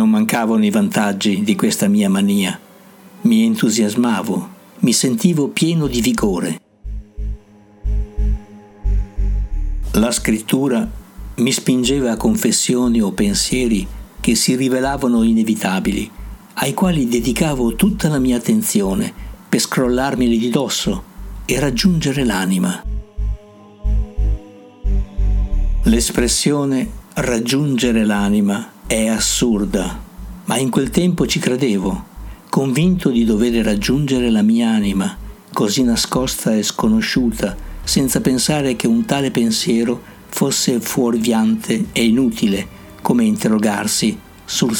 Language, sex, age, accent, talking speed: Italian, male, 60-79, native, 100 wpm